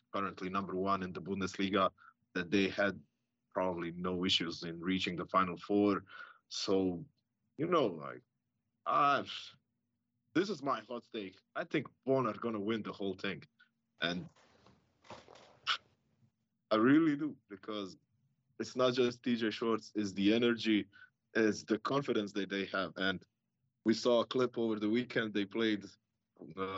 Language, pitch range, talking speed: English, 100-125 Hz, 150 wpm